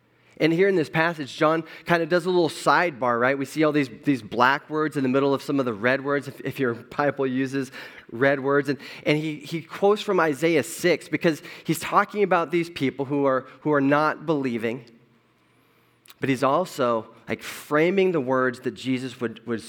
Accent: American